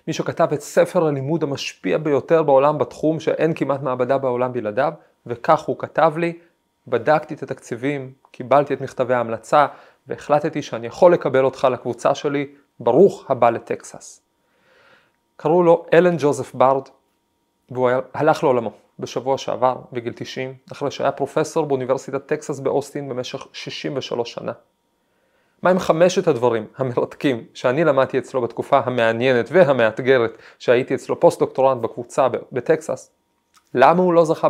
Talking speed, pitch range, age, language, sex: 135 wpm, 130-155 Hz, 30-49, Hebrew, male